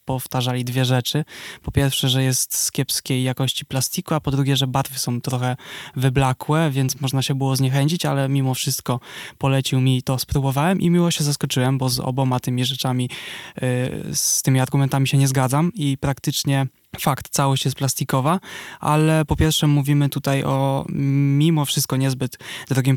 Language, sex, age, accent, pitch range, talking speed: Polish, male, 20-39, native, 130-145 Hz, 165 wpm